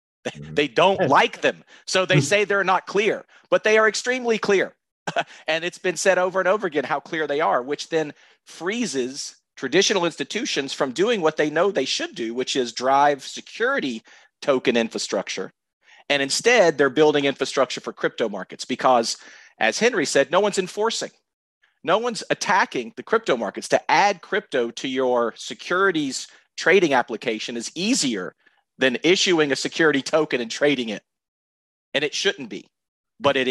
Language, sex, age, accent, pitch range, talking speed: English, male, 40-59, American, 130-180 Hz, 165 wpm